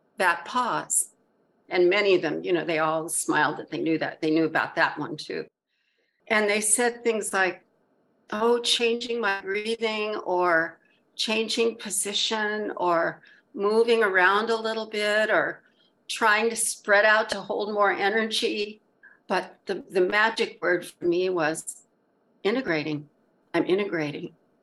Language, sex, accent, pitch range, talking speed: English, female, American, 180-230 Hz, 145 wpm